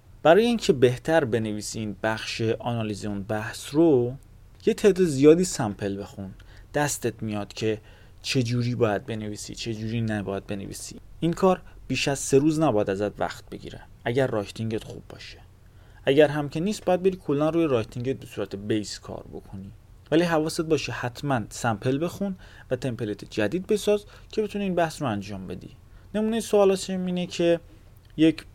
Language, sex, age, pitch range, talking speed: Persian, male, 30-49, 105-150 Hz, 160 wpm